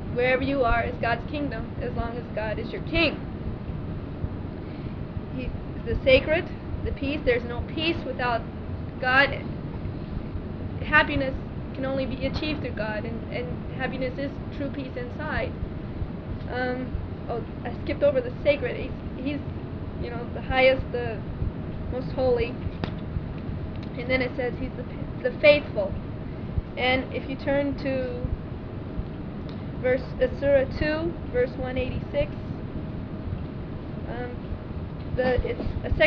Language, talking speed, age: English, 110 wpm, 20-39